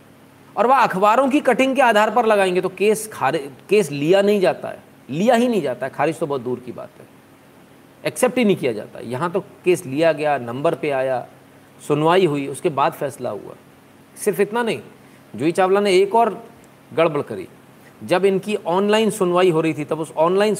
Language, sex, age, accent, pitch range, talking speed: Hindi, male, 40-59, native, 140-195 Hz, 200 wpm